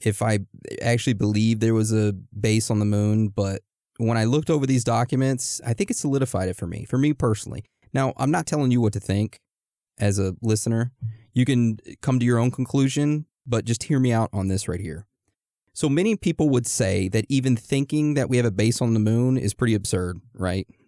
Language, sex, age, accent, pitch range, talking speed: English, male, 30-49, American, 105-130 Hz, 215 wpm